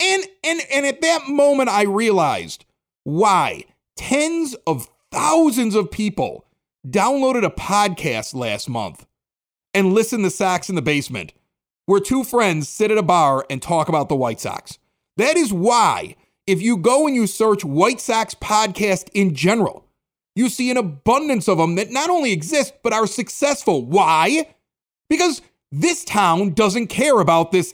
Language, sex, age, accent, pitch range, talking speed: English, male, 40-59, American, 185-285 Hz, 160 wpm